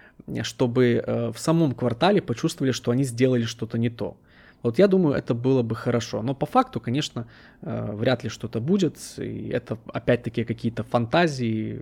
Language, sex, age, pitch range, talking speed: Russian, male, 20-39, 115-130 Hz, 155 wpm